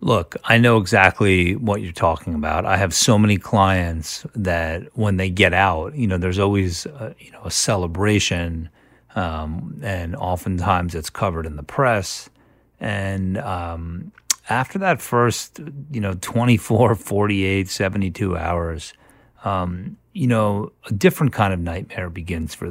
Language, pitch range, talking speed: English, 90-105 Hz, 145 wpm